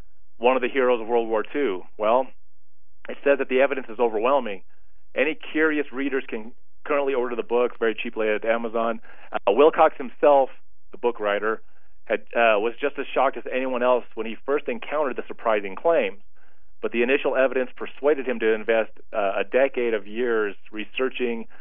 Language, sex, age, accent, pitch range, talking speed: English, male, 40-59, American, 110-135 Hz, 180 wpm